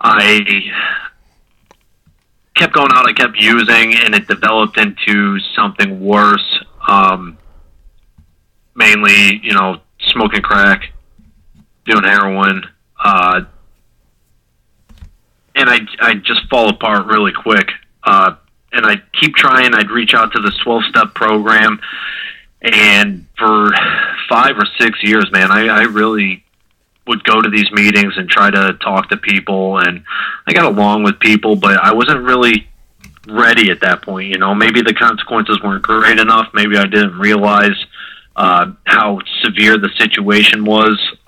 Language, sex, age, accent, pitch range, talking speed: English, male, 30-49, American, 95-105 Hz, 140 wpm